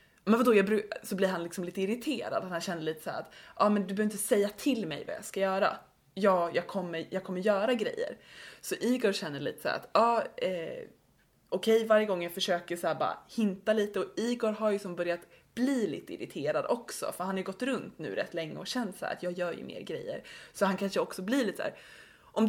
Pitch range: 175-220 Hz